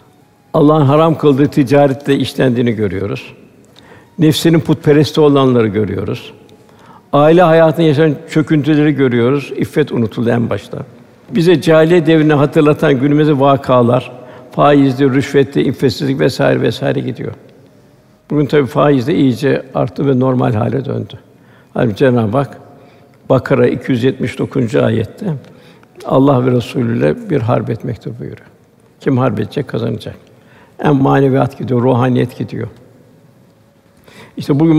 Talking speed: 115 wpm